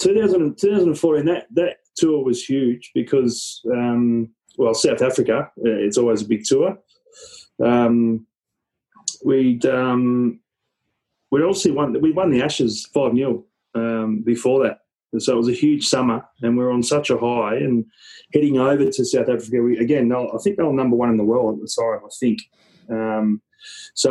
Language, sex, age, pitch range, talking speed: English, male, 30-49, 115-140 Hz, 170 wpm